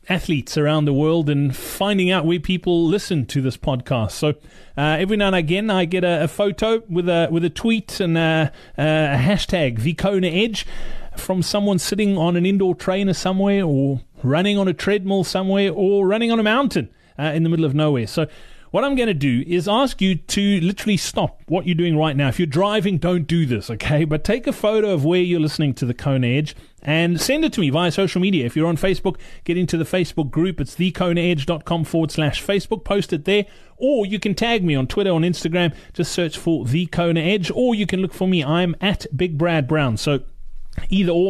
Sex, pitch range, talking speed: male, 145-195 Hz, 220 wpm